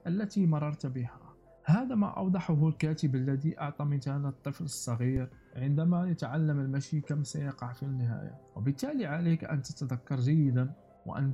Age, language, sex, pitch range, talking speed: 50-69, Arabic, male, 140-170 Hz, 130 wpm